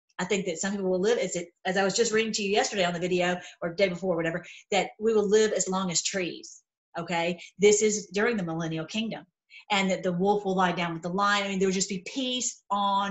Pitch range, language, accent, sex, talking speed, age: 185-235 Hz, English, American, female, 265 wpm, 40-59